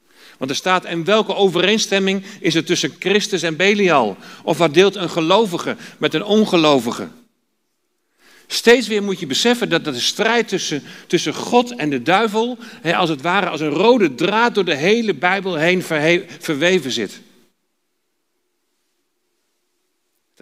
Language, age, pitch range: Dutch, 40-59, 155-240 Hz